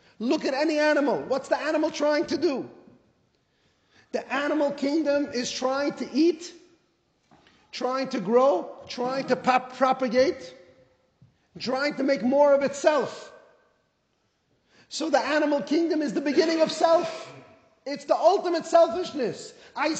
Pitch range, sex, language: 255-320 Hz, male, English